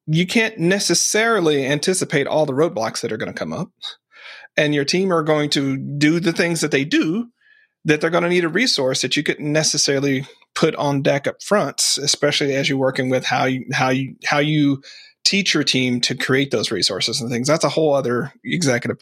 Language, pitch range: English, 135-170 Hz